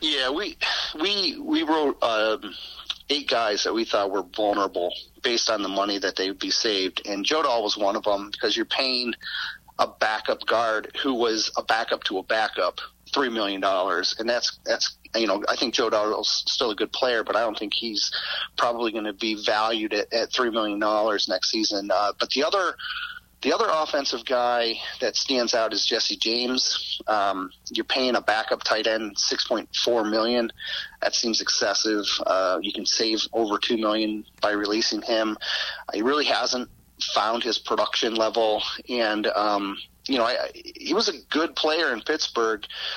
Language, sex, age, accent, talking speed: English, male, 40-59, American, 180 wpm